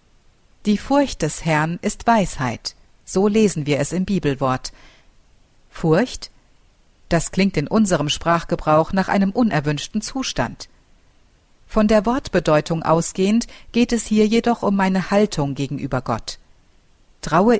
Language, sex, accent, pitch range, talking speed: German, female, German, 155-215 Hz, 125 wpm